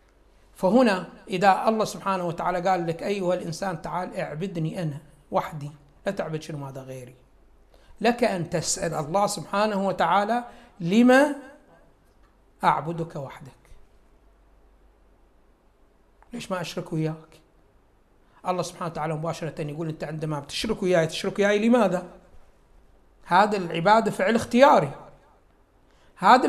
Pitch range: 165-225 Hz